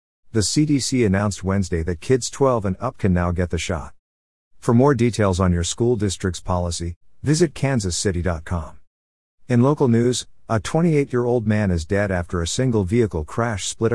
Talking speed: 160 wpm